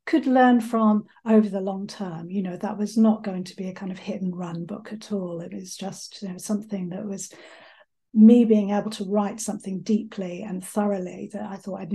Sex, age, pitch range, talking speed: female, 40-59, 190-225 Hz, 225 wpm